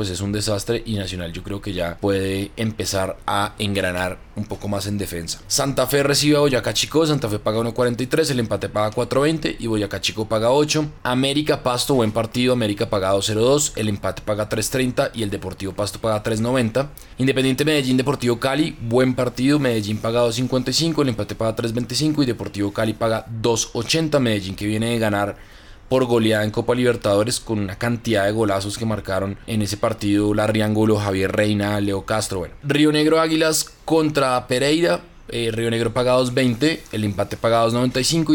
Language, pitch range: Spanish, 105-130 Hz